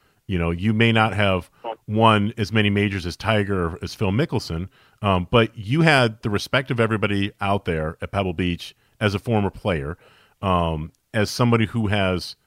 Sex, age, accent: male, 40-59, American